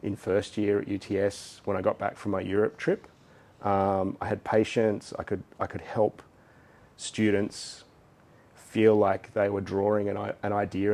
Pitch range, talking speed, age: 95-110 Hz, 170 wpm, 30-49